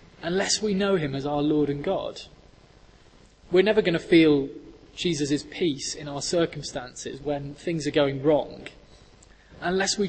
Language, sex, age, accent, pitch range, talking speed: English, male, 20-39, British, 145-180 Hz, 155 wpm